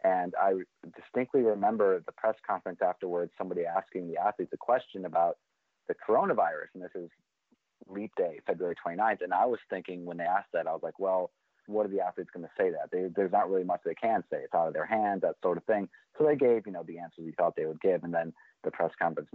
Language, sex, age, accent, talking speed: English, male, 30-49, American, 240 wpm